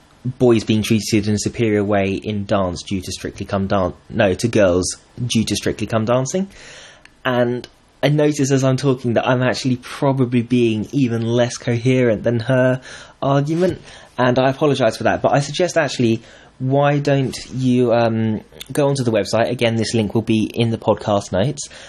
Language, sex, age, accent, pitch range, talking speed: English, male, 20-39, British, 110-145 Hz, 180 wpm